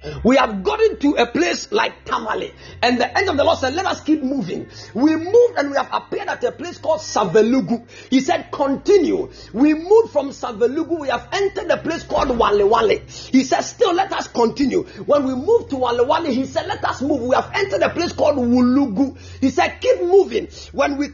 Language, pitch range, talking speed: English, 250-370 Hz, 205 wpm